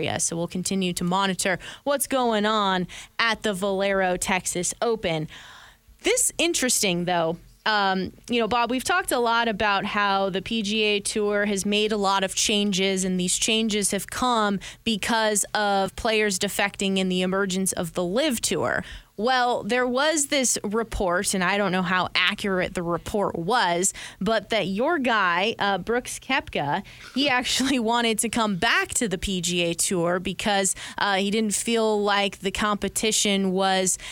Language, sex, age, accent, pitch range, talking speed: English, female, 20-39, American, 185-225 Hz, 160 wpm